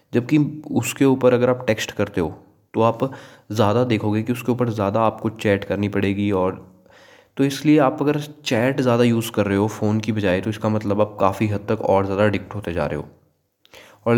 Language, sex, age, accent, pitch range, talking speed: Hindi, male, 20-39, native, 105-125 Hz, 205 wpm